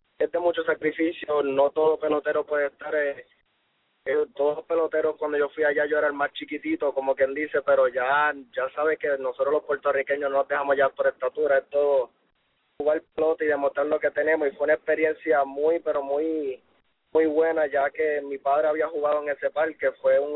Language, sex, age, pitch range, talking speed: English, male, 20-39, 145-185 Hz, 200 wpm